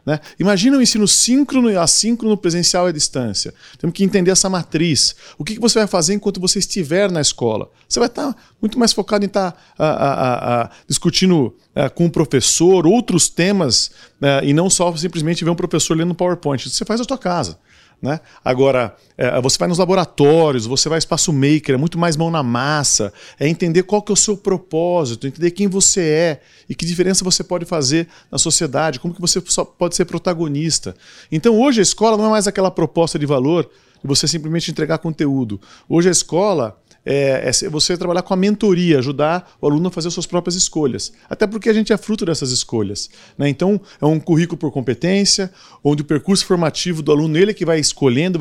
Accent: Brazilian